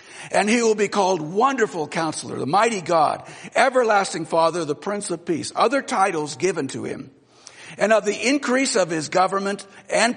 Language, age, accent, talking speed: English, 60-79, American, 170 wpm